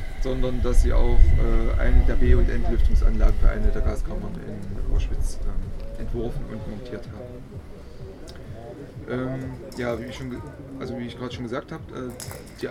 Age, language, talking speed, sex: 20-39, German, 150 wpm, male